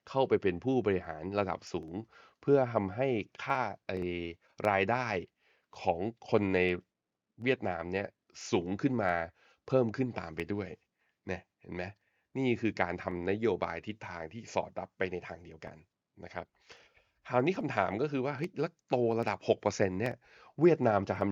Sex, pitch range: male, 90-115 Hz